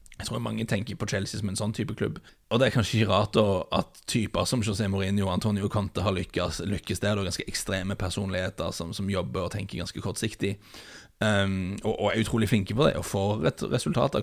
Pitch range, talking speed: 95-115 Hz, 225 wpm